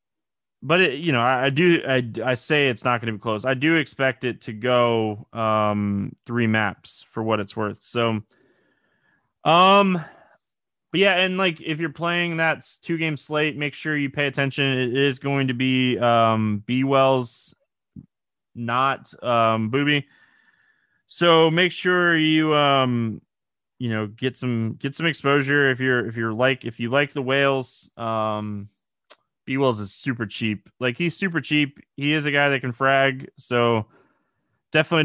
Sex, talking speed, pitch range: male, 165 wpm, 115-150 Hz